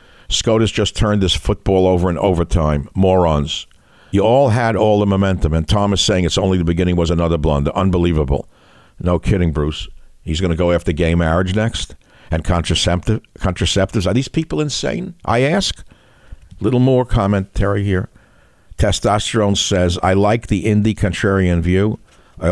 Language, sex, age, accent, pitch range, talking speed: English, male, 60-79, American, 85-105 Hz, 155 wpm